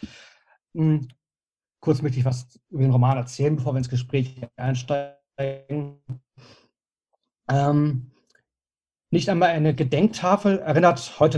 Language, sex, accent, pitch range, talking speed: German, male, German, 125-155 Hz, 105 wpm